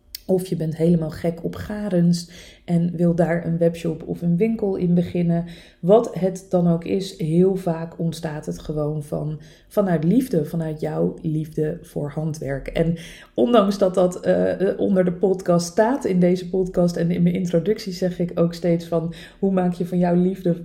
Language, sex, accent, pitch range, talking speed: Dutch, female, Dutch, 165-190 Hz, 175 wpm